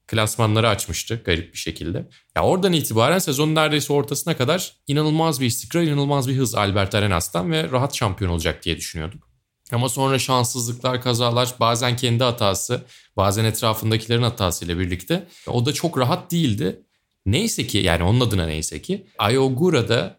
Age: 30-49